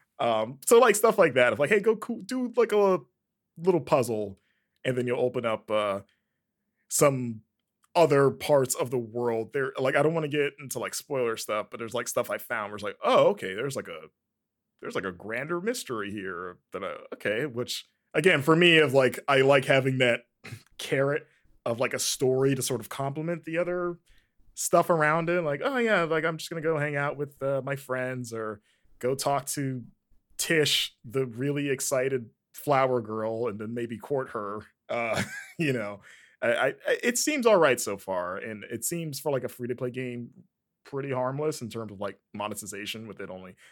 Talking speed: 200 wpm